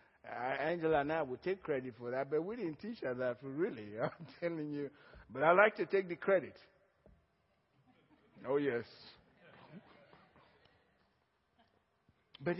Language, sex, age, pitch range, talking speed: English, male, 60-79, 195-260 Hz, 140 wpm